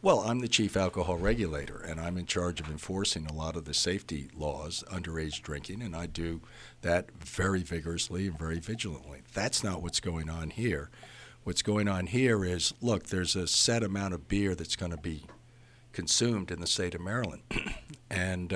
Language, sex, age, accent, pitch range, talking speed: English, male, 60-79, American, 90-115 Hz, 190 wpm